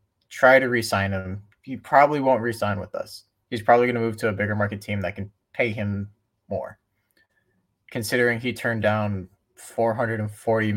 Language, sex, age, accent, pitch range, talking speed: English, male, 20-39, American, 100-110 Hz, 165 wpm